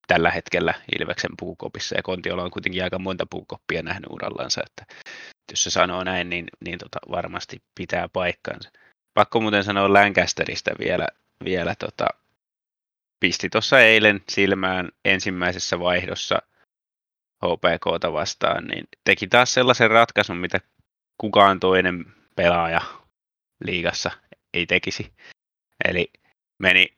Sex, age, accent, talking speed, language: male, 20-39, native, 120 wpm, Finnish